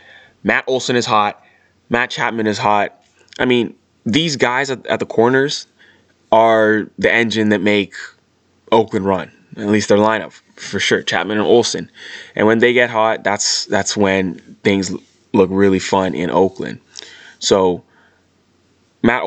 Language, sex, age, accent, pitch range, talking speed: English, male, 20-39, American, 100-120 Hz, 150 wpm